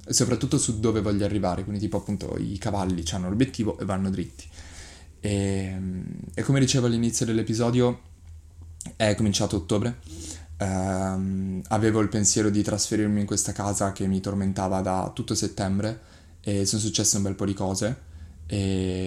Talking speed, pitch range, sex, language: 150 wpm, 95-110 Hz, male, Italian